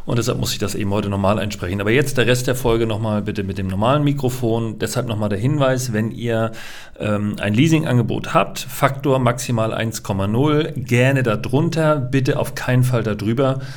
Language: German